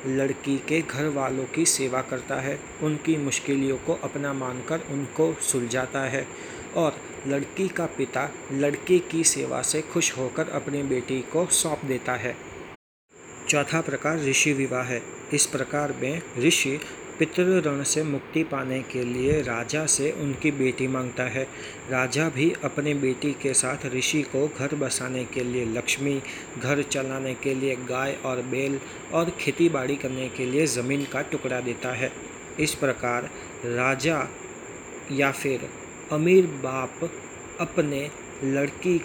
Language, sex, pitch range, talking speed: Hindi, male, 130-155 Hz, 145 wpm